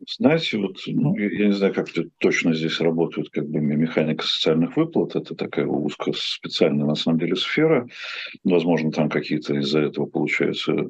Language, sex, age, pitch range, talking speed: Russian, male, 50-69, 75-90 Hz, 155 wpm